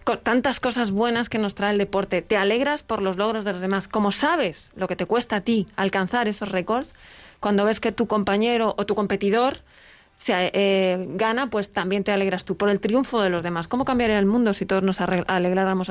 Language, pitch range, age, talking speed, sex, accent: Spanish, 190-235 Hz, 20-39, 220 wpm, female, Spanish